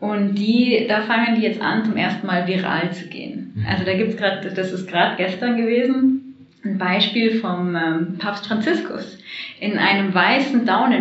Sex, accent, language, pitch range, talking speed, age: female, German, German, 185-230 Hz, 175 wpm, 20-39